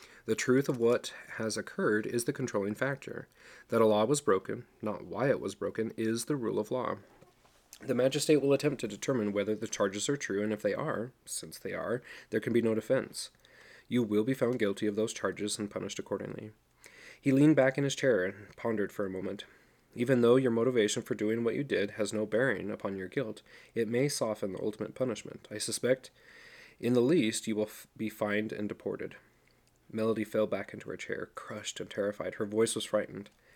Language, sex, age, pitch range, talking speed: English, male, 30-49, 105-125 Hz, 205 wpm